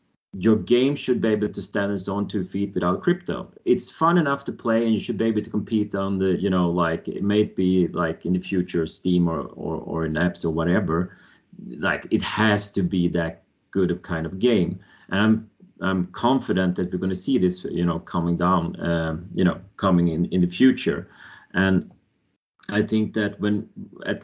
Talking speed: 205 wpm